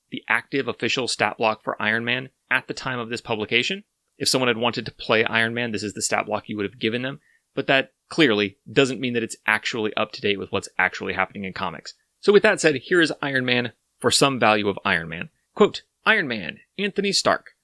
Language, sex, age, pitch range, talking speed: English, male, 30-49, 110-170 Hz, 230 wpm